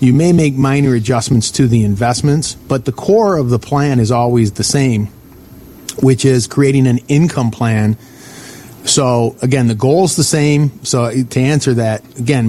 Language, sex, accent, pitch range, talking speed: English, male, American, 115-135 Hz, 175 wpm